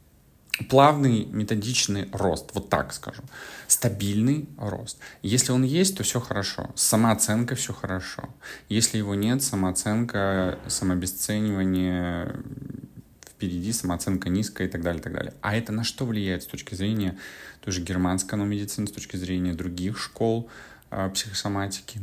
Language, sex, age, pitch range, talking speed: Russian, male, 20-39, 90-115 Hz, 135 wpm